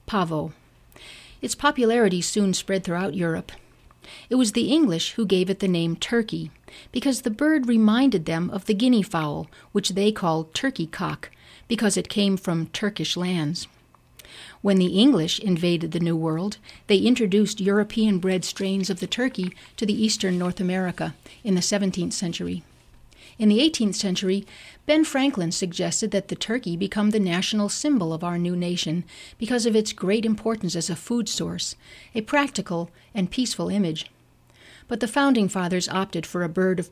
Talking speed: 165 wpm